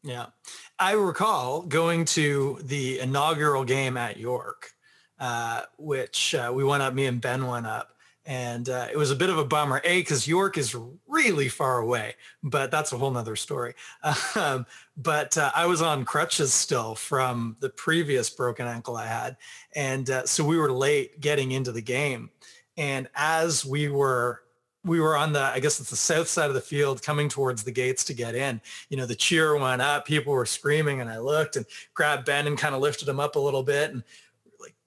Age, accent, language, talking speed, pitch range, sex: 30-49, American, English, 205 wpm, 130-170 Hz, male